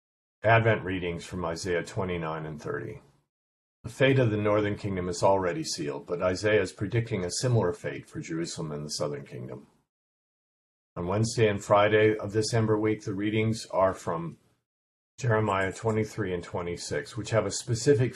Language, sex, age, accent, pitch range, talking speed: English, male, 50-69, American, 90-115 Hz, 160 wpm